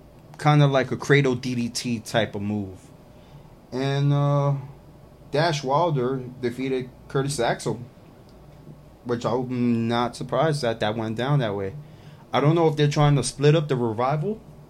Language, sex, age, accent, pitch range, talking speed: English, male, 20-39, American, 115-145 Hz, 150 wpm